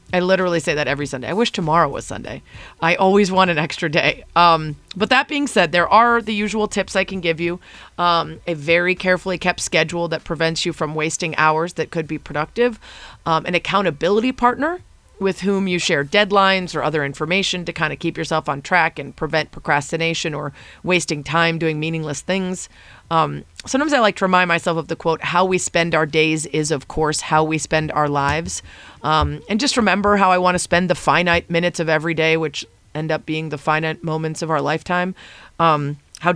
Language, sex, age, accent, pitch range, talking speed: English, female, 30-49, American, 155-180 Hz, 205 wpm